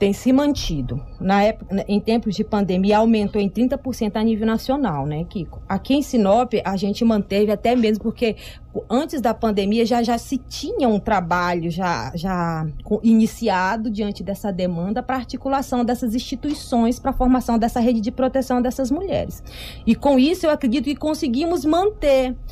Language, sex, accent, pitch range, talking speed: Portuguese, female, Brazilian, 195-265 Hz, 165 wpm